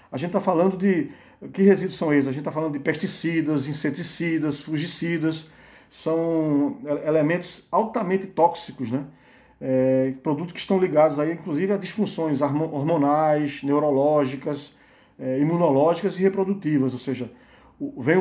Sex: male